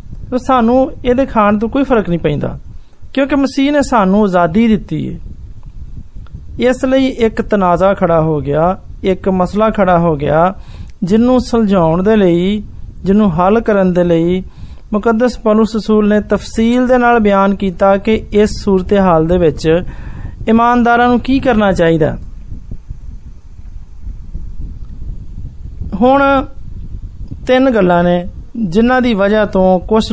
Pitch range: 180-235 Hz